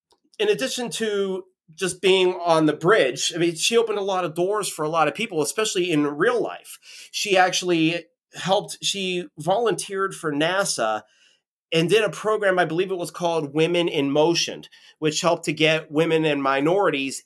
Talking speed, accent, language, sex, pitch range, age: 175 wpm, American, English, male, 140-185 Hz, 30-49